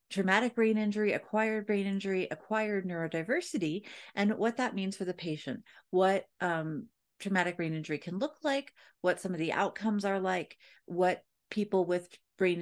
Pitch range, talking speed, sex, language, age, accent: 160-210 Hz, 160 wpm, female, English, 40-59, American